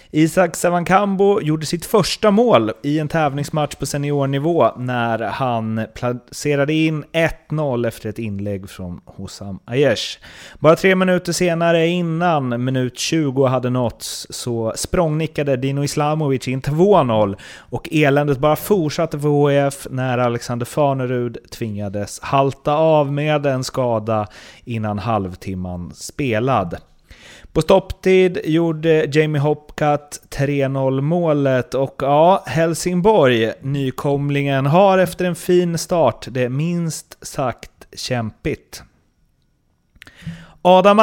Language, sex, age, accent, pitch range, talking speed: Swedish, male, 30-49, native, 125-165 Hz, 105 wpm